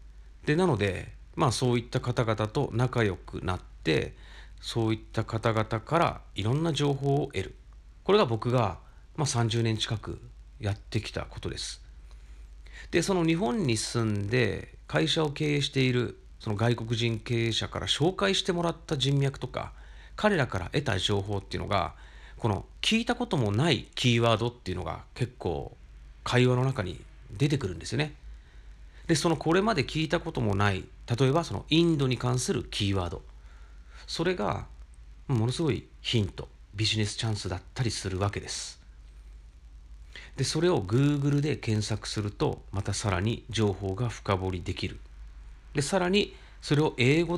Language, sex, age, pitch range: Japanese, male, 40-59, 85-125 Hz